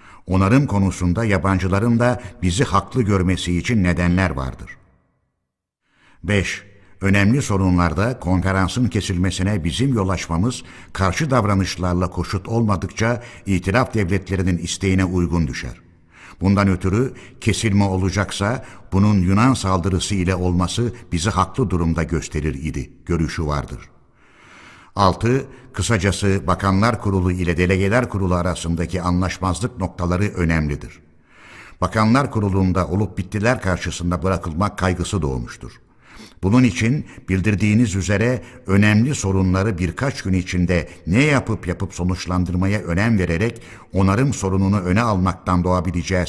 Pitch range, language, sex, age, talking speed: 90-105 Hz, Turkish, male, 60-79, 105 wpm